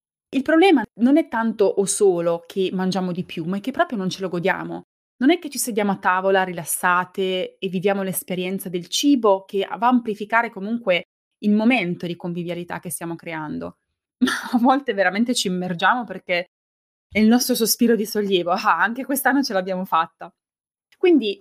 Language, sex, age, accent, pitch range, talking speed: Italian, female, 20-39, native, 180-235 Hz, 180 wpm